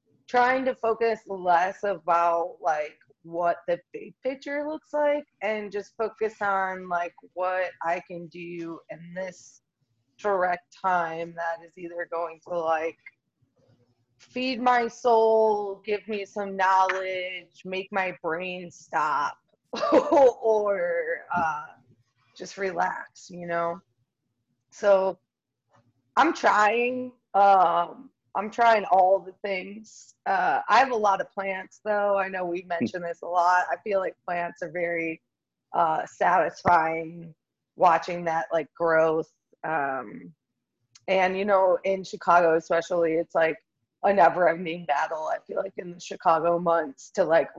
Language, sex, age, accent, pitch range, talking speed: English, female, 20-39, American, 170-205 Hz, 135 wpm